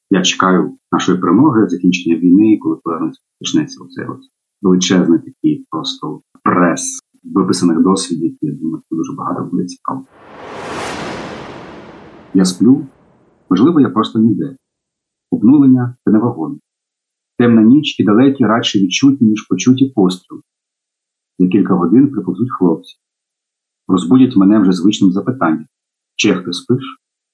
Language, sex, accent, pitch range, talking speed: Ukrainian, male, native, 95-130 Hz, 120 wpm